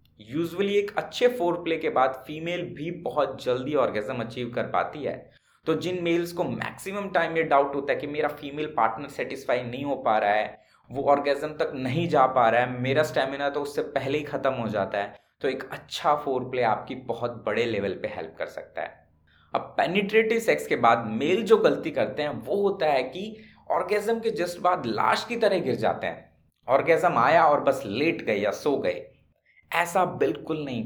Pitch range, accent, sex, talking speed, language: 135-185 Hz, native, male, 200 wpm, Hindi